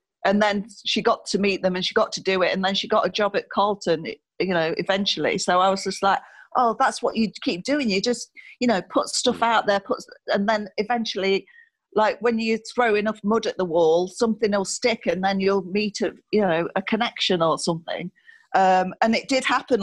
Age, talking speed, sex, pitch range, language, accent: 40-59, 225 wpm, female, 180-220 Hz, English, British